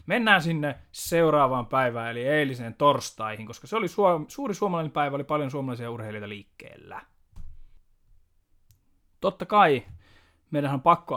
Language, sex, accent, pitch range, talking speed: Finnish, male, native, 115-155 Hz, 125 wpm